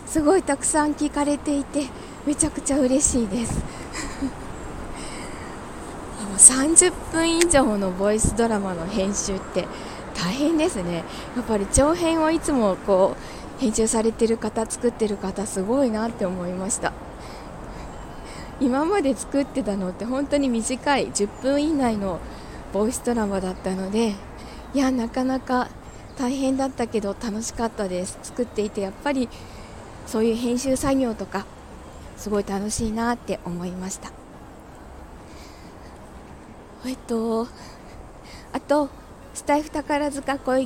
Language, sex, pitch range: Japanese, female, 205-270 Hz